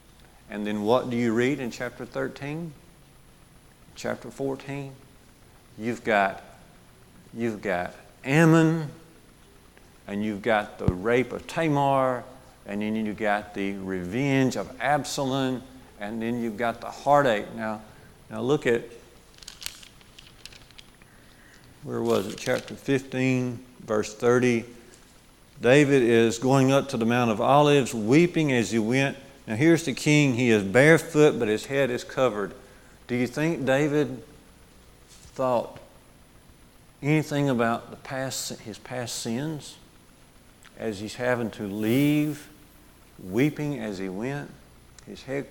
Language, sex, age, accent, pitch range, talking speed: English, male, 50-69, American, 110-140 Hz, 125 wpm